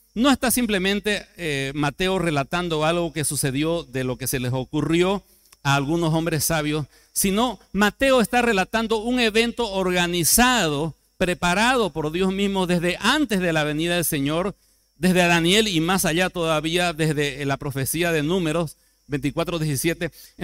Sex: male